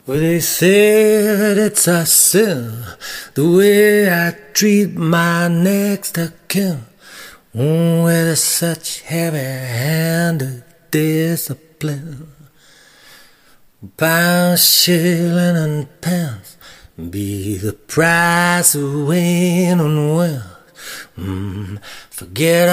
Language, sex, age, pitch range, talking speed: English, male, 40-59, 140-170 Hz, 85 wpm